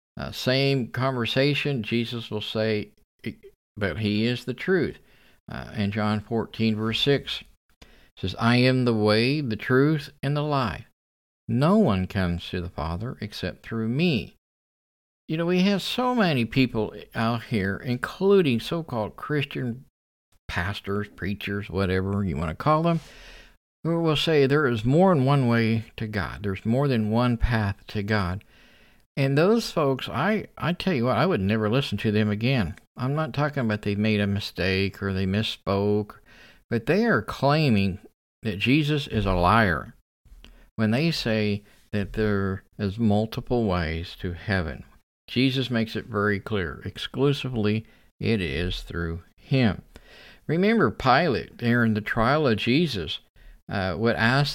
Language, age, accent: English, 50-69, American